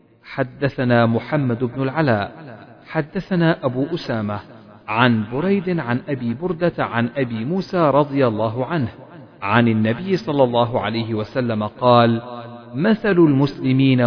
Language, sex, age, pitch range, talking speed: Arabic, male, 40-59, 115-160 Hz, 115 wpm